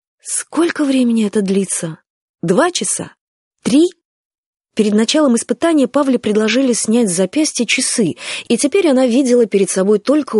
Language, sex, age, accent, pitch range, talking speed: Russian, female, 20-39, native, 185-255 Hz, 135 wpm